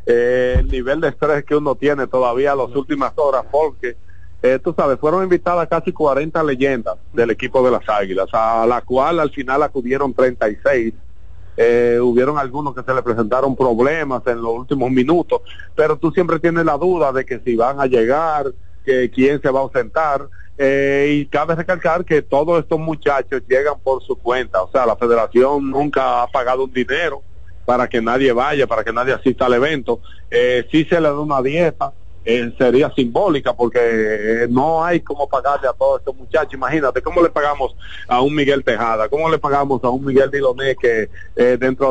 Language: Spanish